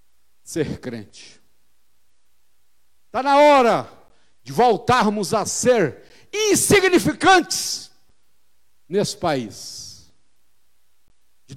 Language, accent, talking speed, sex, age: Portuguese, Brazilian, 65 wpm, male, 60-79